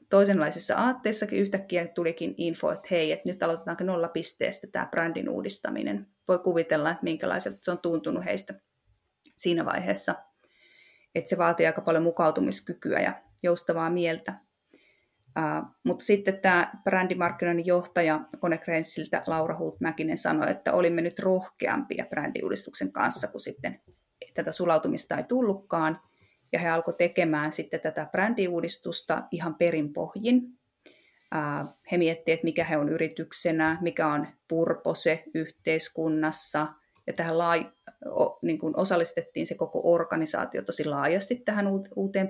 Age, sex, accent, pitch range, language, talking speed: 30-49, female, native, 165-195 Hz, Finnish, 130 wpm